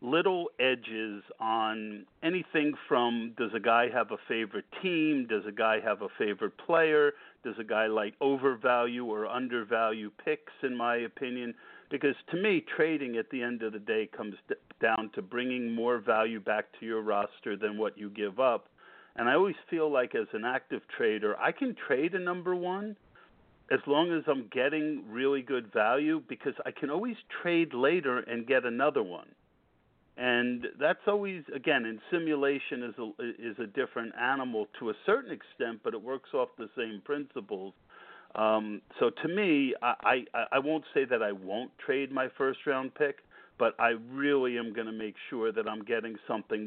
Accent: American